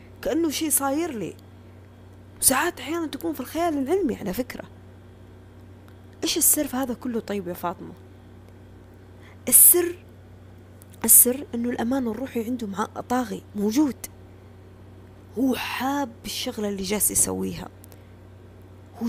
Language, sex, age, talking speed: Arabic, female, 20-39, 110 wpm